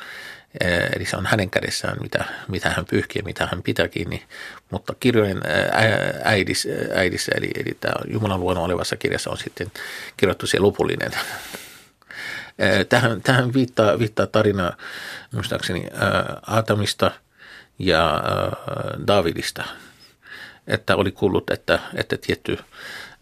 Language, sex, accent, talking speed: Finnish, male, native, 115 wpm